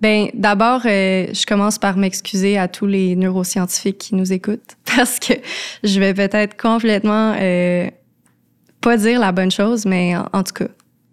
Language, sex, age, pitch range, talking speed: French, female, 20-39, 190-220 Hz, 165 wpm